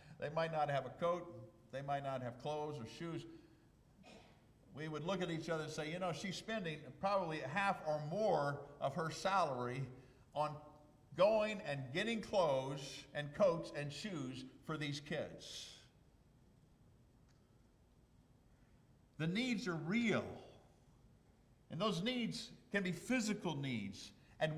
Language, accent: English, American